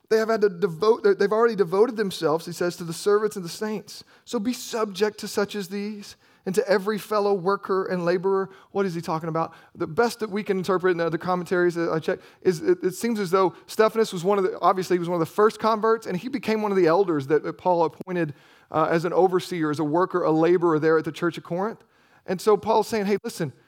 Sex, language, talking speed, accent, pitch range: male, English, 250 wpm, American, 165-210 Hz